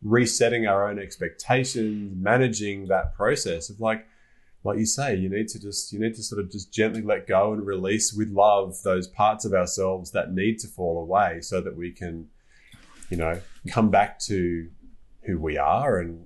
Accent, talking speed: Australian, 190 wpm